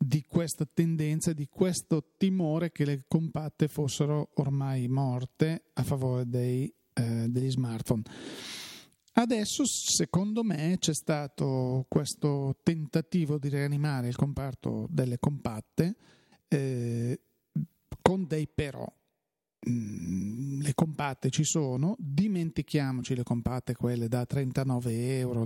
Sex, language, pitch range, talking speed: male, Italian, 130-170 Hz, 110 wpm